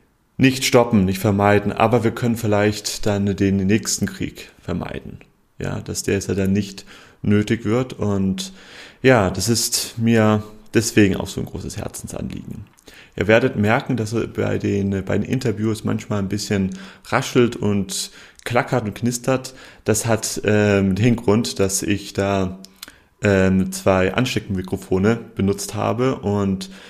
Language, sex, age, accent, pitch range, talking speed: German, male, 30-49, German, 95-115 Hz, 140 wpm